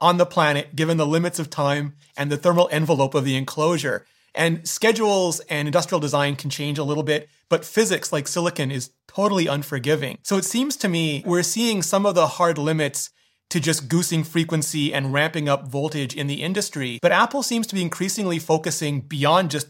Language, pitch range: English, 145-185 Hz